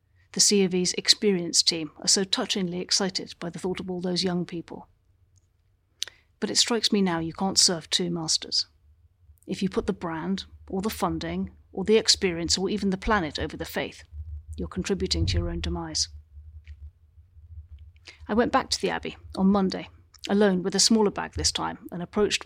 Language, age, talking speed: English, 40-59, 180 wpm